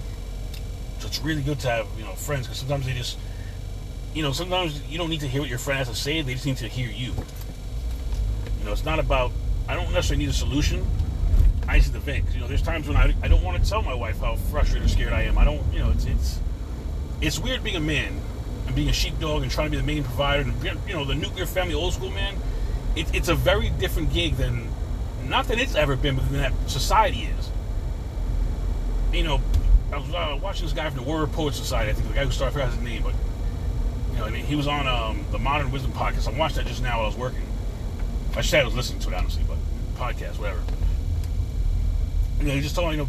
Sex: male